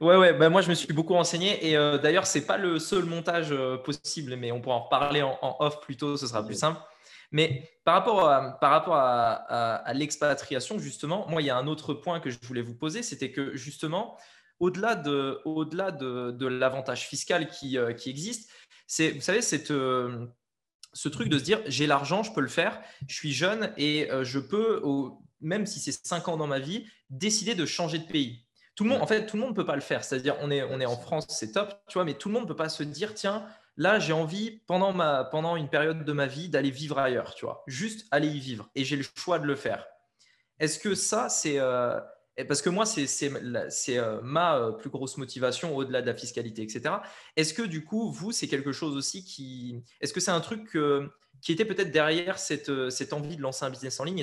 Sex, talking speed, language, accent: male, 240 wpm, French, French